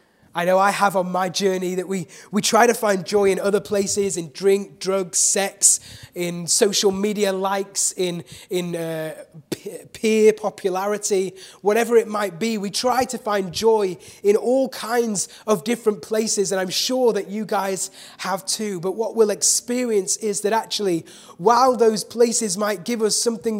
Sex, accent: male, British